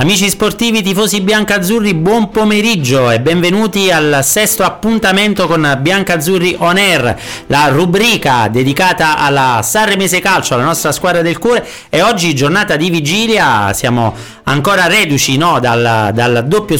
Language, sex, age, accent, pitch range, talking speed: Italian, male, 40-59, native, 140-195 Hz, 145 wpm